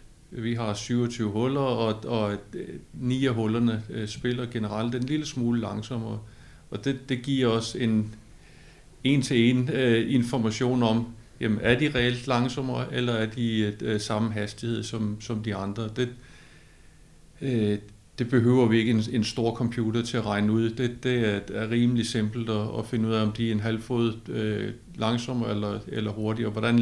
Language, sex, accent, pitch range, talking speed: Danish, male, native, 110-125 Hz, 175 wpm